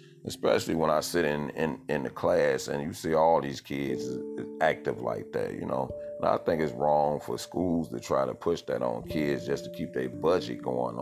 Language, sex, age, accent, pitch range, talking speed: English, male, 40-59, American, 70-115 Hz, 220 wpm